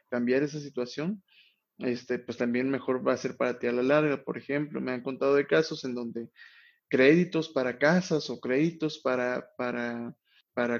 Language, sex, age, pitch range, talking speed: Spanish, male, 20-39, 125-145 Hz, 180 wpm